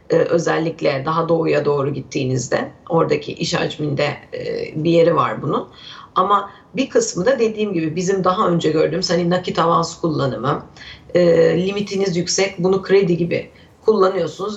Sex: female